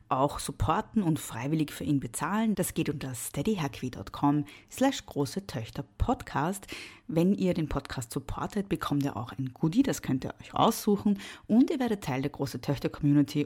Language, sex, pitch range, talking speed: German, female, 140-185 Hz, 150 wpm